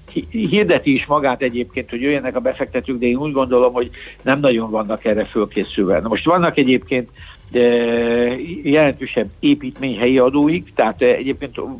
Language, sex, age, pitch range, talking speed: Hungarian, male, 60-79, 120-135 Hz, 135 wpm